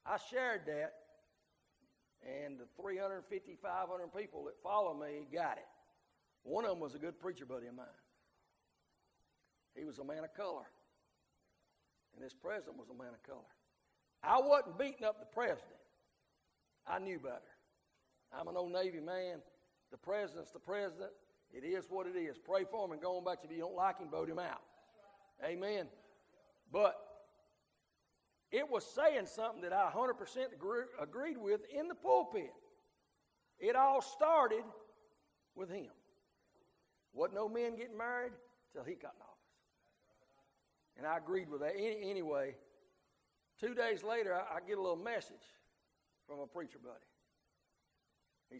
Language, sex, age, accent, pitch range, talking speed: English, male, 60-79, American, 150-230 Hz, 160 wpm